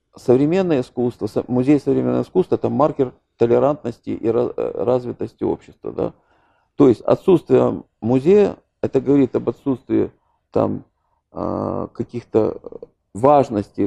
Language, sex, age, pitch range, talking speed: Ukrainian, male, 40-59, 110-145 Hz, 100 wpm